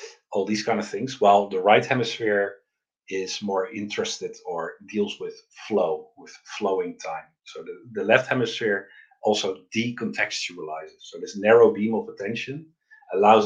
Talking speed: 145 wpm